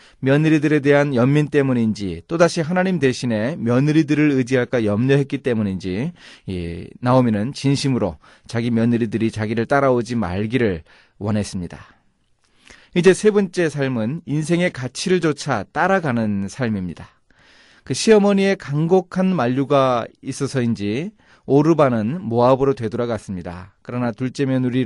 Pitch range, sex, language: 110-155 Hz, male, Korean